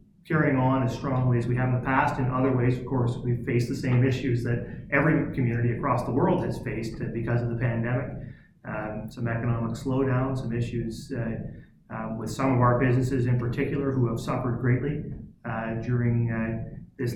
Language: English